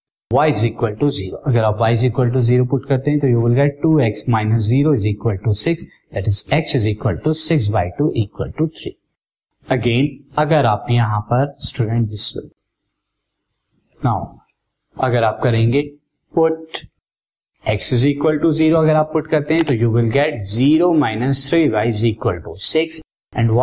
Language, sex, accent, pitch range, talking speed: Hindi, male, native, 115-150 Hz, 155 wpm